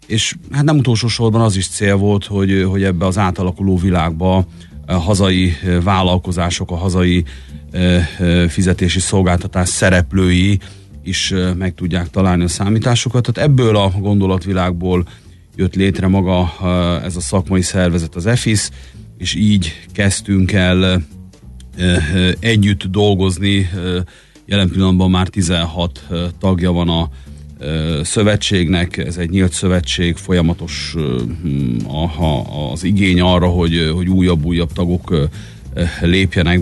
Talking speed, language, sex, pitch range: 115 wpm, Hungarian, male, 90-100 Hz